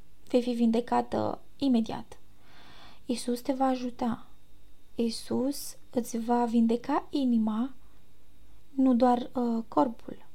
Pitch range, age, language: 230-265 Hz, 20-39, Romanian